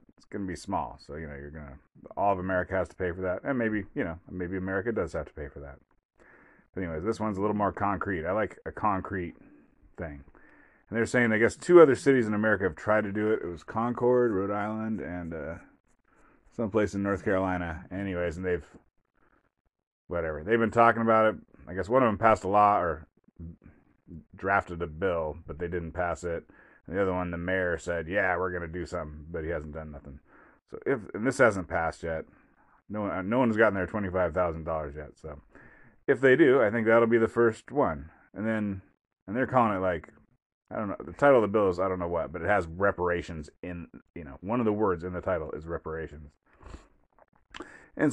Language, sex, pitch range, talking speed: English, male, 85-110 Hz, 220 wpm